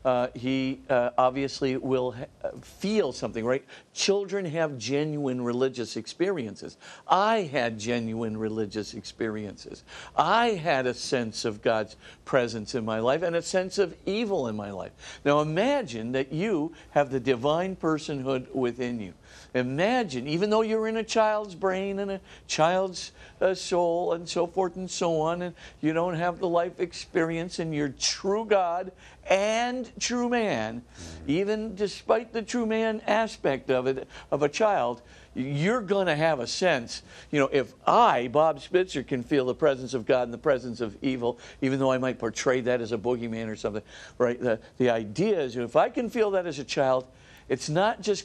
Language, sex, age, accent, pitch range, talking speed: English, male, 50-69, American, 120-185 Hz, 175 wpm